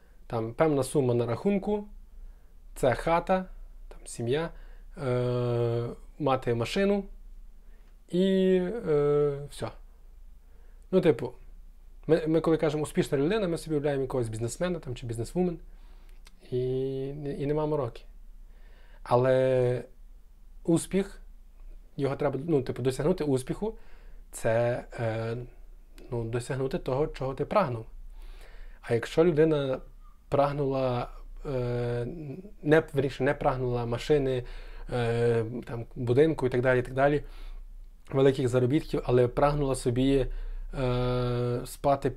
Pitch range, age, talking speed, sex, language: 120-145 Hz, 20-39, 100 wpm, male, Ukrainian